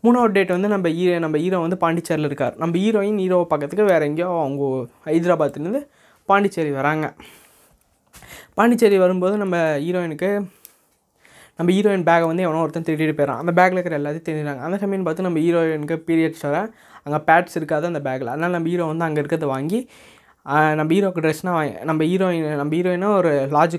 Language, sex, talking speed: Tamil, female, 165 wpm